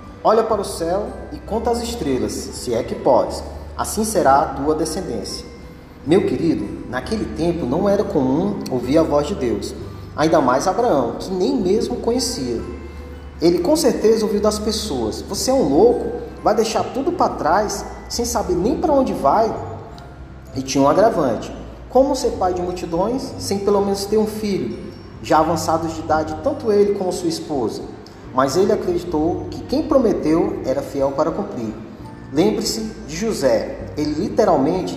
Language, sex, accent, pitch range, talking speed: Portuguese, male, Brazilian, 150-220 Hz, 165 wpm